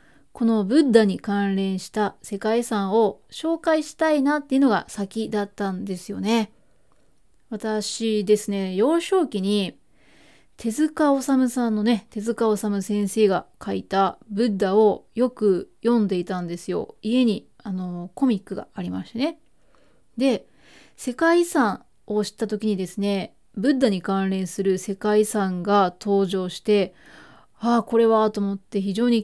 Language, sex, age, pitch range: Japanese, female, 20-39, 195-240 Hz